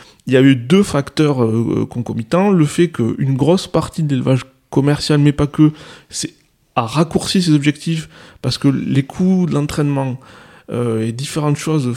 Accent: French